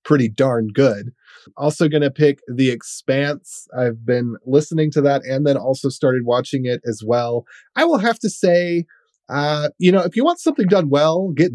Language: English